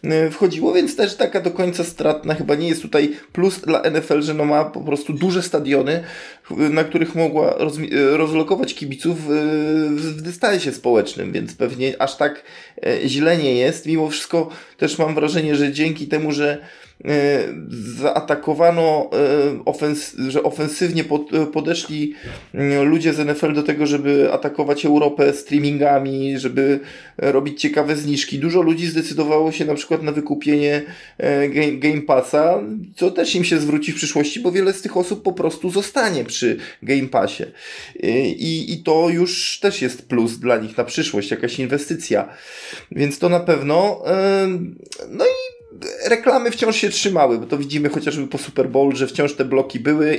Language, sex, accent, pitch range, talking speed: Polish, male, native, 145-170 Hz, 150 wpm